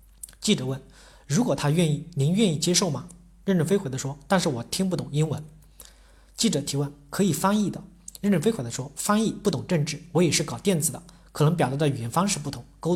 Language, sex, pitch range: Chinese, male, 140-180 Hz